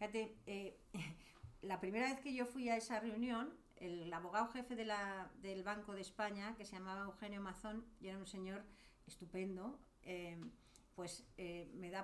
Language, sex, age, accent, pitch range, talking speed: English, female, 50-69, Spanish, 185-225 Hz, 165 wpm